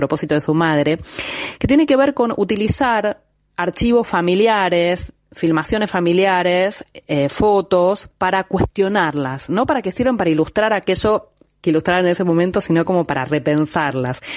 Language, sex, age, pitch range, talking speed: Spanish, female, 30-49, 155-195 Hz, 145 wpm